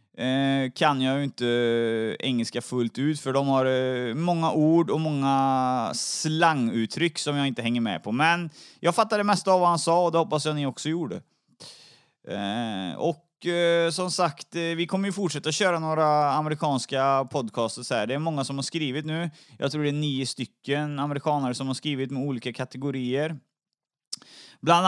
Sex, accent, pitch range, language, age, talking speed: male, native, 140-175 Hz, Swedish, 30-49, 180 wpm